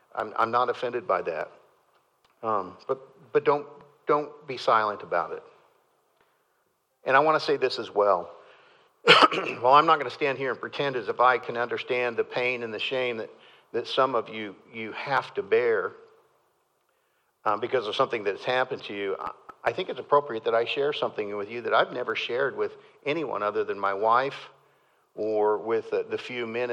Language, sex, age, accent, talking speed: English, male, 50-69, American, 190 wpm